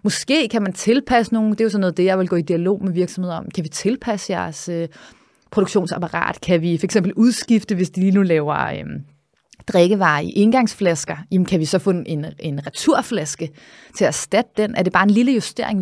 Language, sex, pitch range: Danish, female, 180-225 Hz